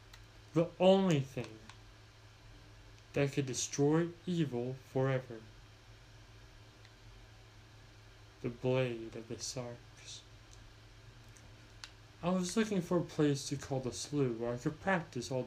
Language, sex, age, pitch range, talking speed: English, male, 20-39, 105-140 Hz, 110 wpm